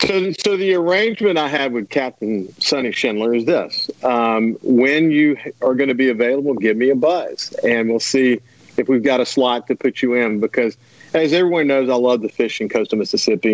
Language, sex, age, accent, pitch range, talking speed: English, male, 50-69, American, 110-140 Hz, 210 wpm